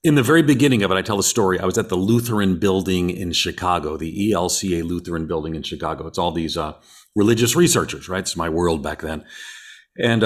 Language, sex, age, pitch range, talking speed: English, male, 40-59, 90-115 Hz, 215 wpm